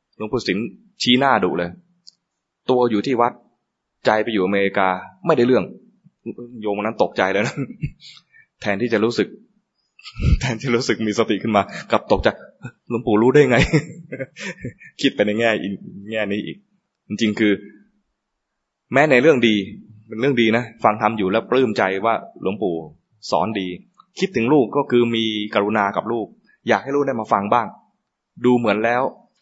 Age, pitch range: 20-39, 100-135 Hz